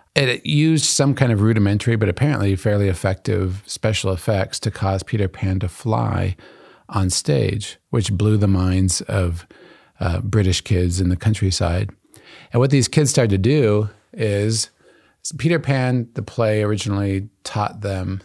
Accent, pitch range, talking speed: American, 95-120 Hz, 150 wpm